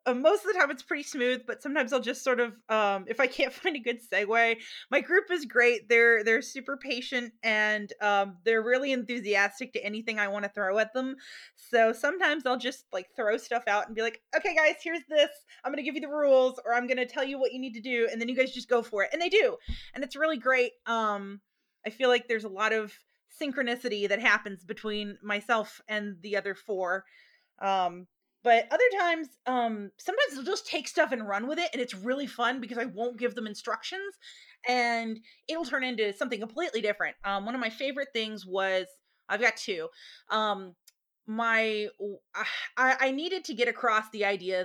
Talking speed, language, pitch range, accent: 215 wpm, English, 215-280 Hz, American